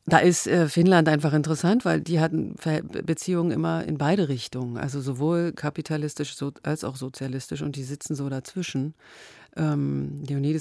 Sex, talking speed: female, 160 wpm